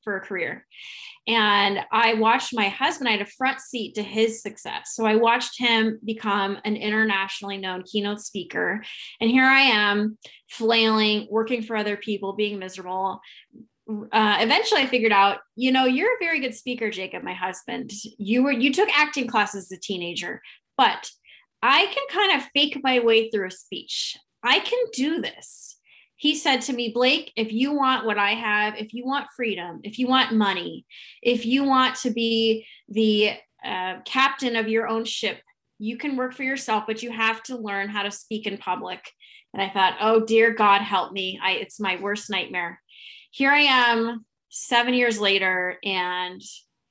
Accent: American